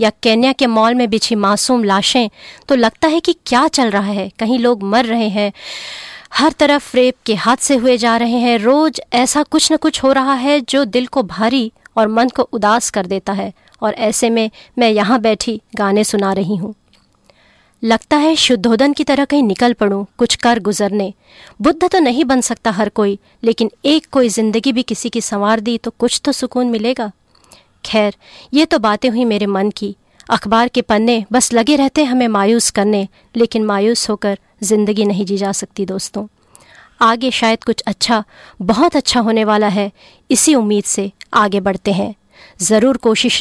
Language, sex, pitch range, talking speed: English, female, 210-255 Hz, 185 wpm